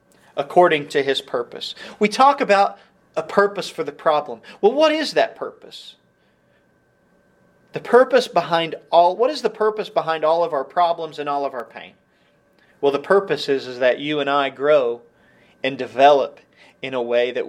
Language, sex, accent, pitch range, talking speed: English, male, American, 135-195 Hz, 175 wpm